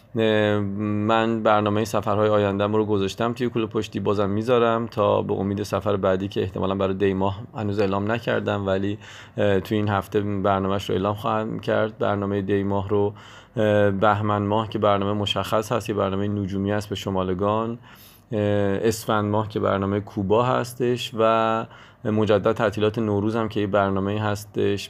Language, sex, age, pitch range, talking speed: Persian, male, 30-49, 100-110 Hz, 150 wpm